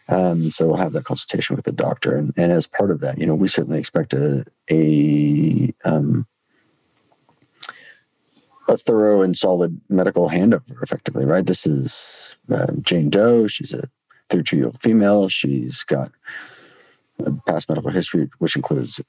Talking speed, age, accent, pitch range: 150 wpm, 40-59, American, 80-105 Hz